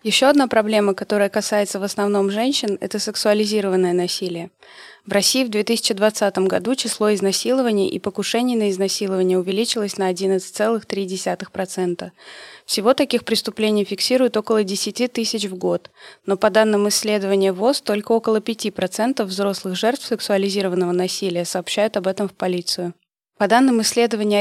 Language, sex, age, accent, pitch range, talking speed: Russian, female, 20-39, native, 190-220 Hz, 135 wpm